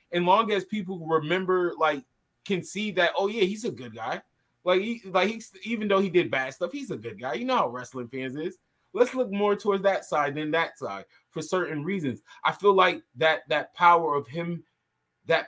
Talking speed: 215 wpm